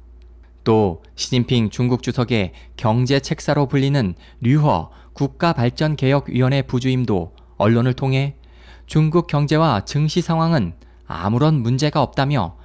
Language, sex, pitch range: Korean, male, 95-160 Hz